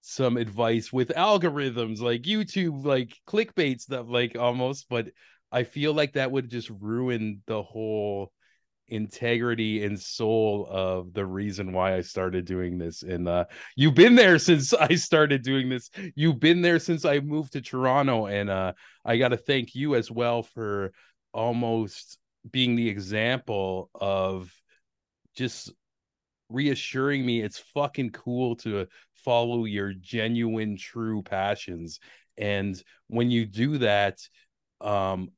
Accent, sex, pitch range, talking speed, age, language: American, male, 100-145 Hz, 140 wpm, 30-49, English